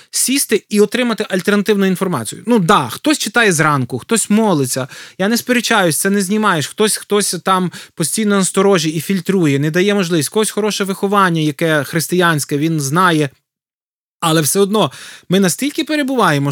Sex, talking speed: male, 155 wpm